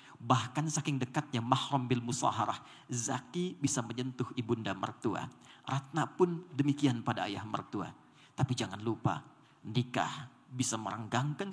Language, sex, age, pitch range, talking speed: Indonesian, male, 40-59, 120-150 Hz, 120 wpm